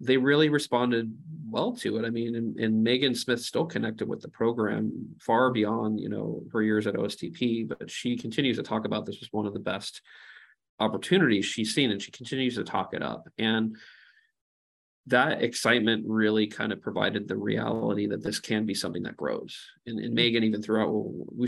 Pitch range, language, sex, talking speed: 105-115 Hz, English, male, 200 wpm